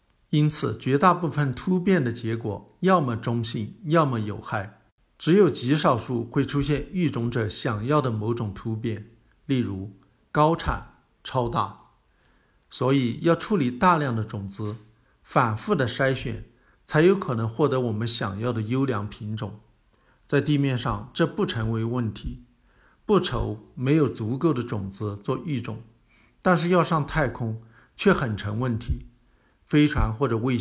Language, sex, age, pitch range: Chinese, male, 60-79, 110-150 Hz